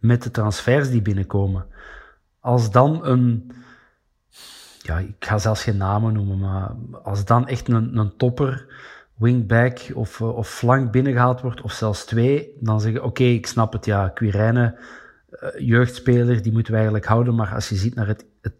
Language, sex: Dutch, male